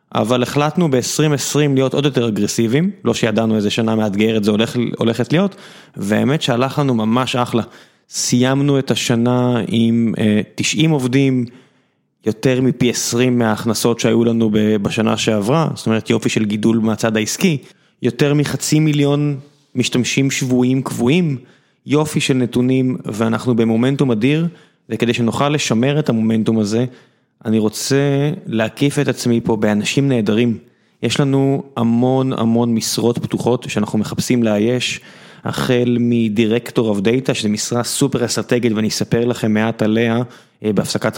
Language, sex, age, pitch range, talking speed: Hebrew, male, 20-39, 110-140 Hz, 135 wpm